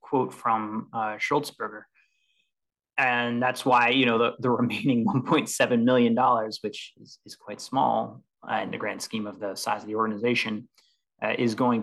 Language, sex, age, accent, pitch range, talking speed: English, male, 20-39, American, 105-120 Hz, 165 wpm